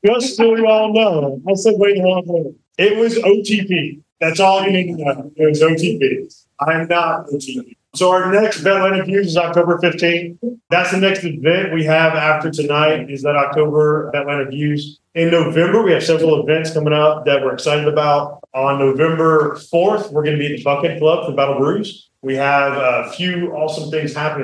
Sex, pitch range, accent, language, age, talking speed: male, 140-185 Hz, American, English, 30-49, 200 wpm